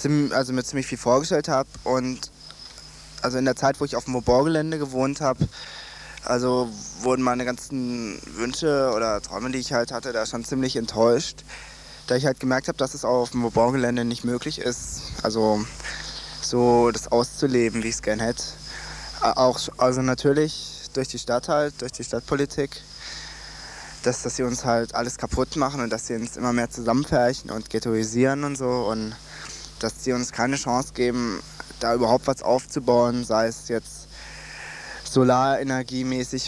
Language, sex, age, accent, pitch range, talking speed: German, male, 20-39, German, 115-130 Hz, 165 wpm